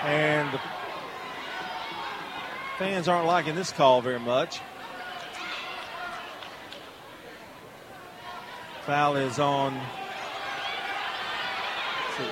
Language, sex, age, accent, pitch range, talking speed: English, male, 40-59, American, 145-190 Hz, 65 wpm